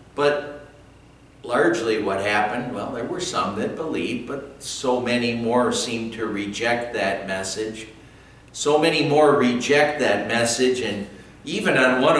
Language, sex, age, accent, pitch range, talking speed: English, male, 60-79, American, 110-140 Hz, 145 wpm